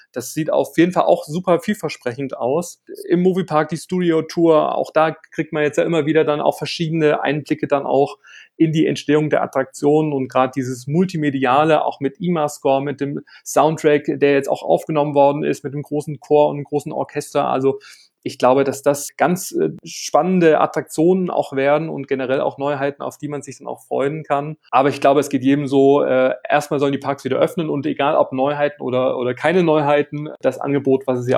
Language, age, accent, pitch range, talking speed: German, 30-49, German, 130-155 Hz, 200 wpm